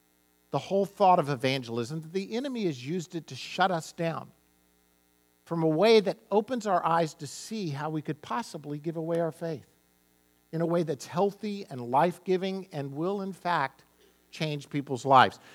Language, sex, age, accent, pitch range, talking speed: English, male, 50-69, American, 125-195 Hz, 180 wpm